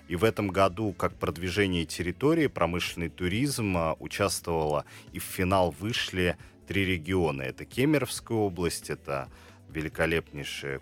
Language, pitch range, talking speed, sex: Russian, 80-105 Hz, 115 wpm, male